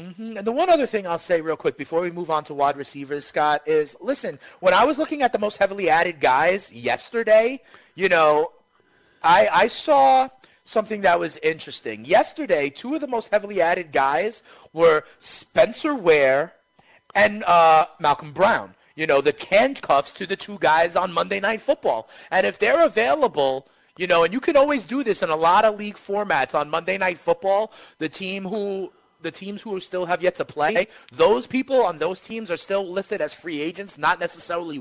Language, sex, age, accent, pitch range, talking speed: English, male, 30-49, American, 170-245 Hz, 195 wpm